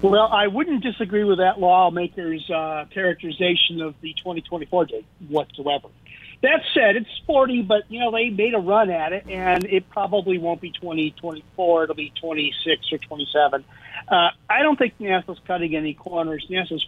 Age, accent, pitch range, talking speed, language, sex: 50-69, American, 160-200 Hz, 165 wpm, English, male